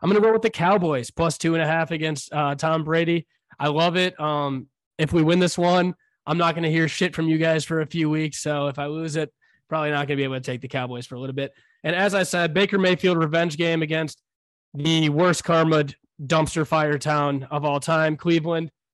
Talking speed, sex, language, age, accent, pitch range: 240 wpm, male, English, 20-39, American, 155-185 Hz